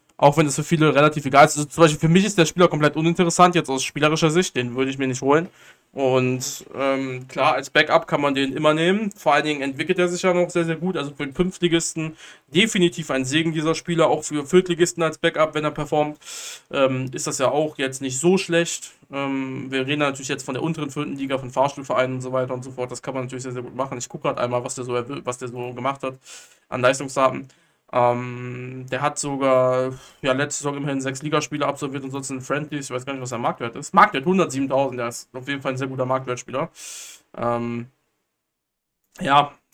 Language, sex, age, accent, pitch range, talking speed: German, male, 20-39, German, 130-165 Hz, 230 wpm